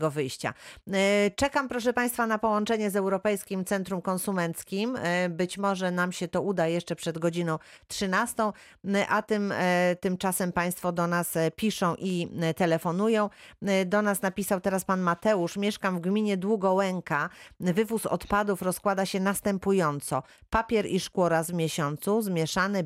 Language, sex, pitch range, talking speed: Polish, female, 165-200 Hz, 135 wpm